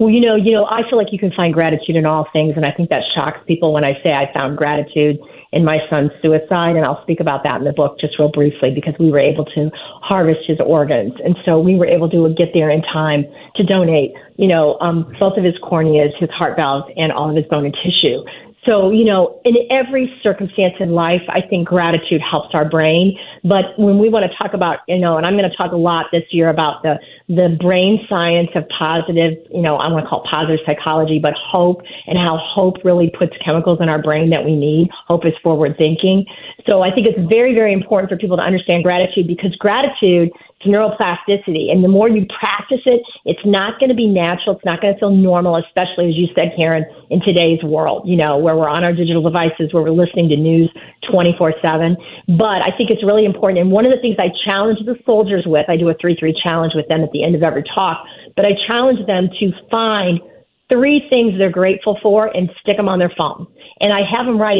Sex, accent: female, American